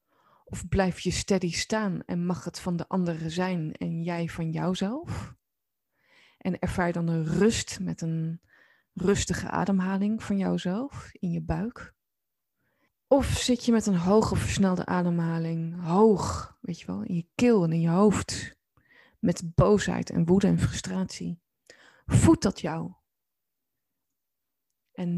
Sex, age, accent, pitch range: female, 20-39, Dutch, 165-210 Hz